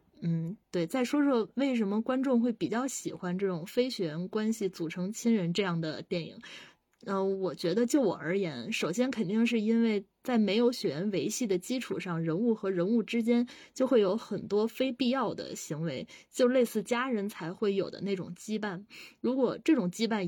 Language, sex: Chinese, female